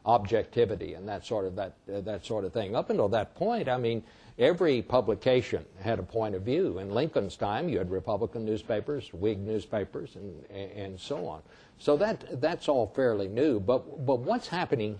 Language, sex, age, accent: English, male, 60-79, American